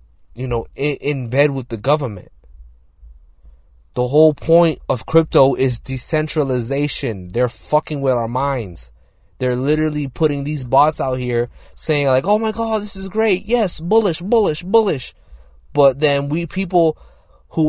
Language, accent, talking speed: English, American, 150 wpm